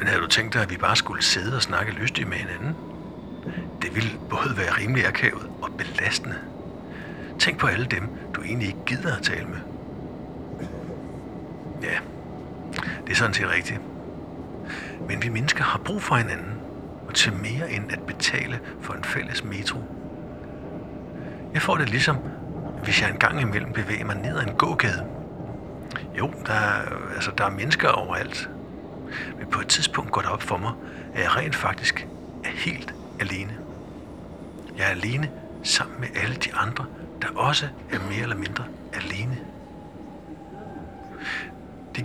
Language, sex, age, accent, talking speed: Danish, male, 60-79, native, 160 wpm